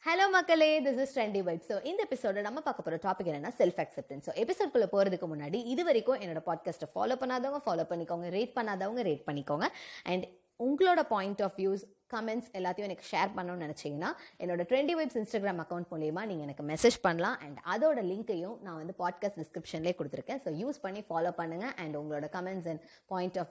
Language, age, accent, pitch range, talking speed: Tamil, 20-39, native, 170-230 Hz, 180 wpm